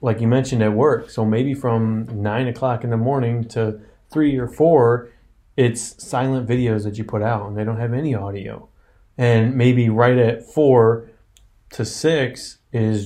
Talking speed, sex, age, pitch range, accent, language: 175 wpm, male, 30-49, 115-130 Hz, American, English